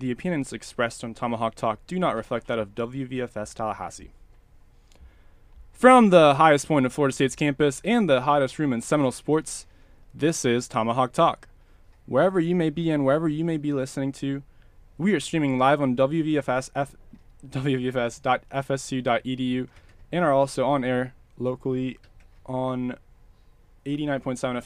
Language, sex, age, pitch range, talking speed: English, male, 20-39, 120-145 Hz, 145 wpm